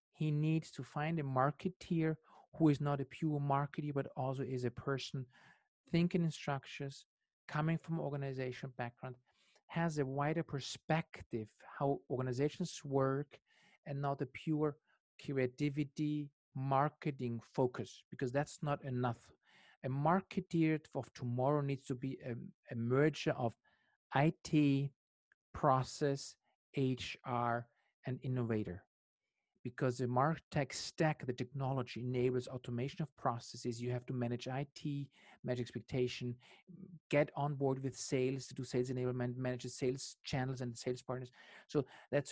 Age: 50-69